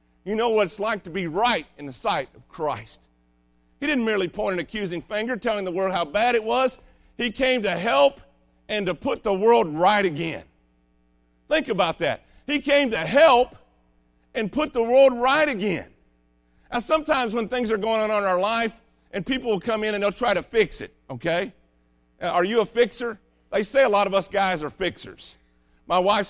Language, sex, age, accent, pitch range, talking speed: English, male, 50-69, American, 140-230 Hz, 200 wpm